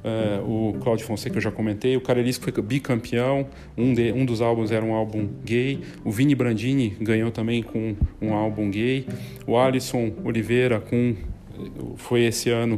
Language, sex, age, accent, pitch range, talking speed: Portuguese, male, 40-59, Brazilian, 110-130 Hz, 175 wpm